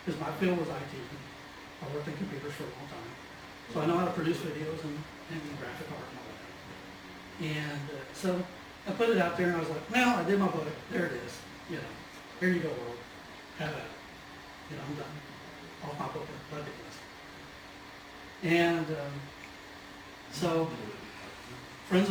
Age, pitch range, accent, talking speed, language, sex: 60-79, 140-170 Hz, American, 185 wpm, English, male